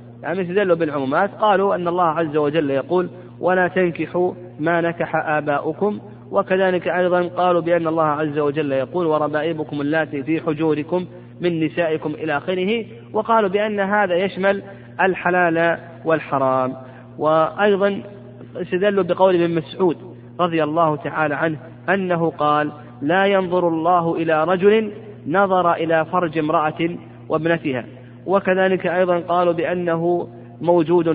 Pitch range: 145-180 Hz